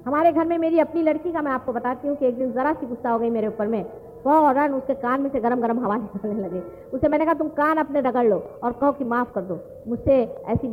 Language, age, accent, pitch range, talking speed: English, 50-69, Indian, 210-290 Hz, 275 wpm